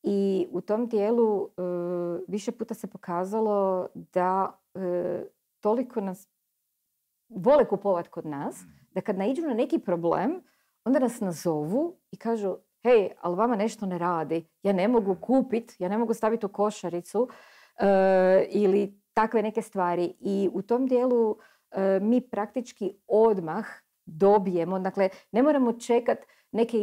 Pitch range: 195-255 Hz